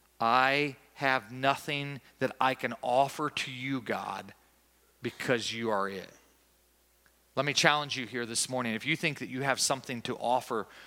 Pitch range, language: 100-130 Hz, English